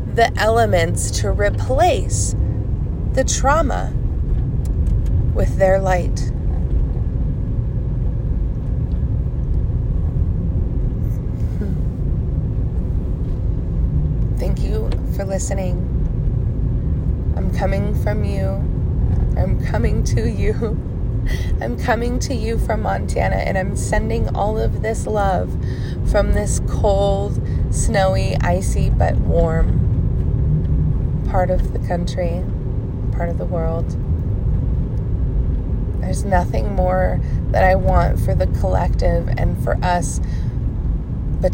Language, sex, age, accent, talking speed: English, female, 20-39, American, 90 wpm